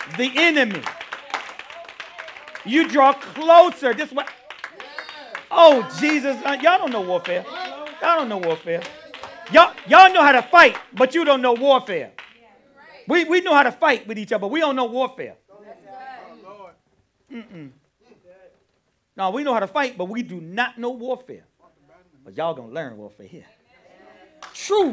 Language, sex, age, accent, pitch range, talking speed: English, male, 40-59, American, 230-320 Hz, 150 wpm